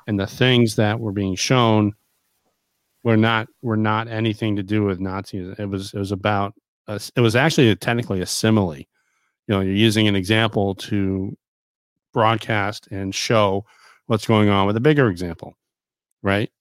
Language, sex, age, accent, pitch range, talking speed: English, male, 40-59, American, 100-115 Hz, 170 wpm